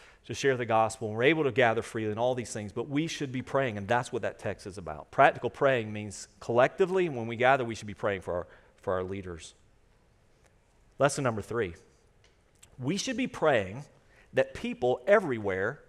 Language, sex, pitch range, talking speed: English, male, 120-185 Hz, 200 wpm